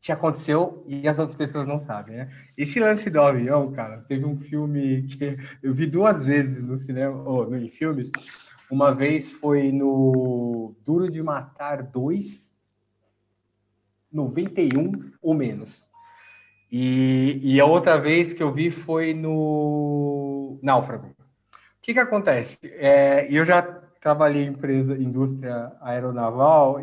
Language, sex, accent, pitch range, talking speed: Portuguese, male, Brazilian, 130-160 Hz, 135 wpm